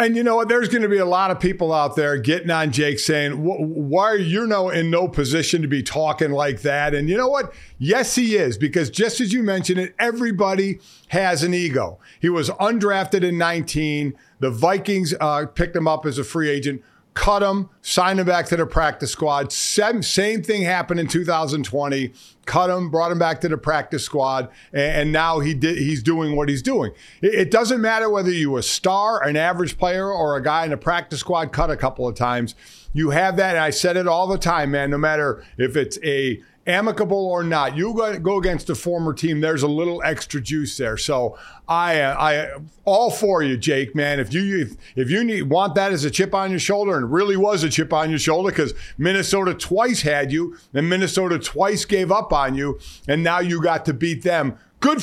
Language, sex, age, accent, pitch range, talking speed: English, male, 50-69, American, 150-195 Hz, 220 wpm